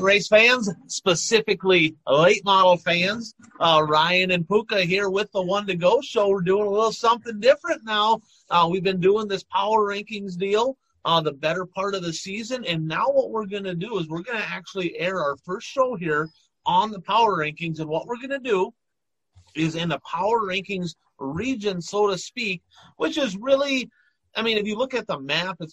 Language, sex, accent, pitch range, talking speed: English, male, American, 165-205 Hz, 205 wpm